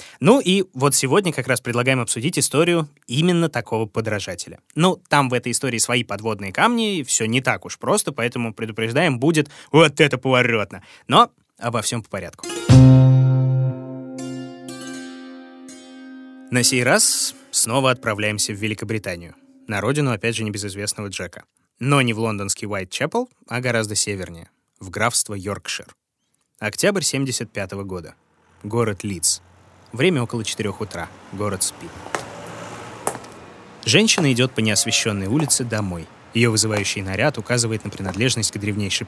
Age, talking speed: 20-39, 130 wpm